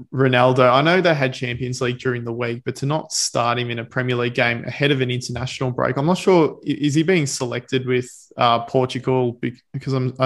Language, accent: English, Australian